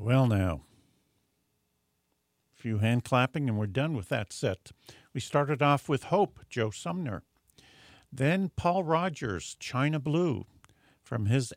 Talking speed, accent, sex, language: 135 wpm, American, male, English